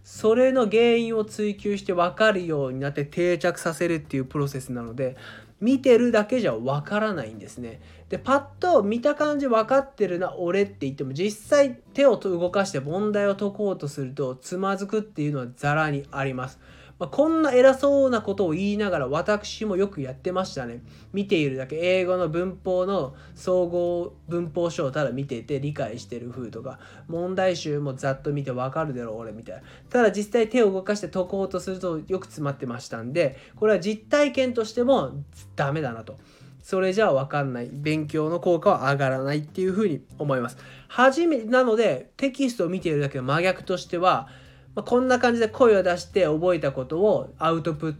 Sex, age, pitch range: male, 20-39, 135-215 Hz